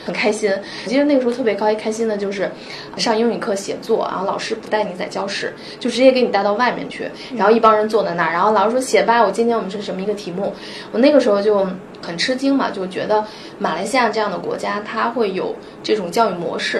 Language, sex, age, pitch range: Chinese, female, 20-39, 180-230 Hz